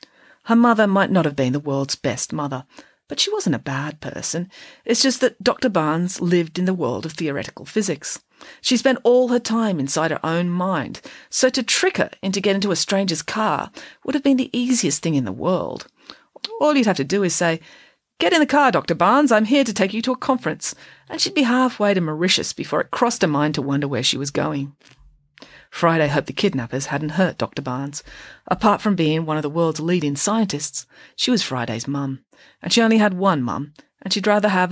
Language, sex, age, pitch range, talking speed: English, female, 40-59, 145-205 Hz, 215 wpm